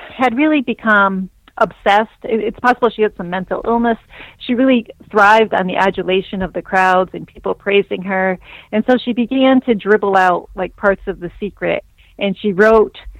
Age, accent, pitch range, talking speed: 40-59, American, 185-220 Hz, 175 wpm